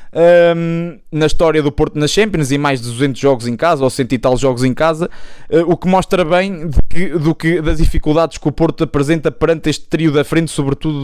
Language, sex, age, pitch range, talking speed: Portuguese, male, 20-39, 150-185 Hz, 230 wpm